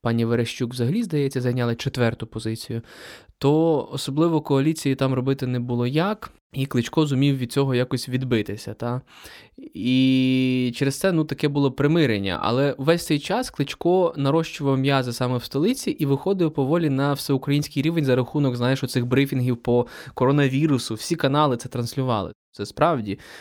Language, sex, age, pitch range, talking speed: Ukrainian, male, 20-39, 115-140 Hz, 150 wpm